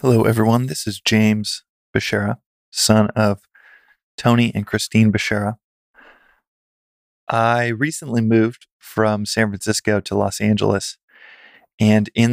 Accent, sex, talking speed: American, male, 110 wpm